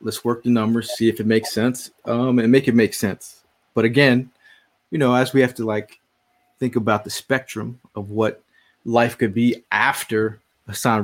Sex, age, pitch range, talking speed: male, 20-39, 110-125 Hz, 190 wpm